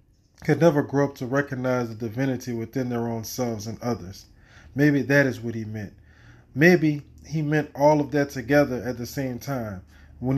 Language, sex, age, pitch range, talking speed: English, male, 20-39, 105-135 Hz, 185 wpm